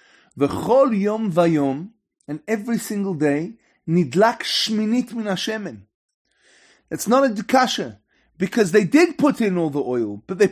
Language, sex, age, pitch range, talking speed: English, male, 30-49, 185-275 Hz, 145 wpm